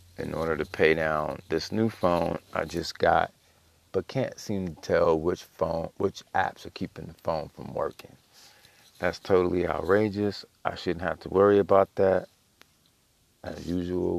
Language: English